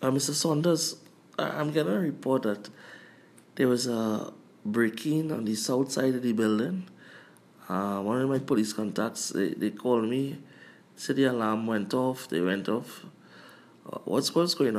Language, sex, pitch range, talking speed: English, male, 115-150 Hz, 165 wpm